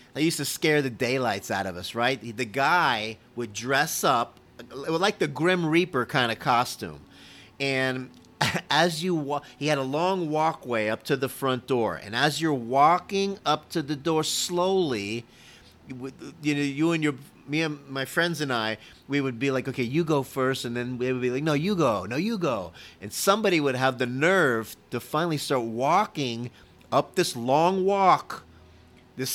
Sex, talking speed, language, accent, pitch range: male, 185 wpm, English, American, 120-160 Hz